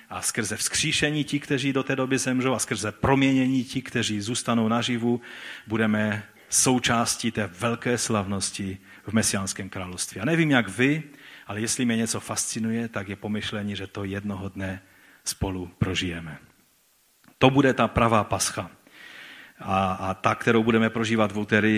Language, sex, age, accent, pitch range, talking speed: Czech, male, 40-59, native, 105-135 Hz, 150 wpm